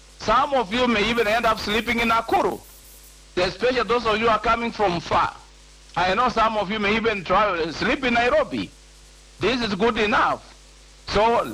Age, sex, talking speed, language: 50-69, male, 180 wpm, English